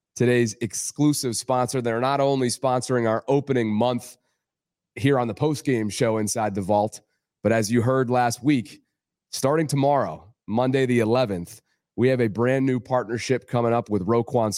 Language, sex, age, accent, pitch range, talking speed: English, male, 30-49, American, 110-130 Hz, 165 wpm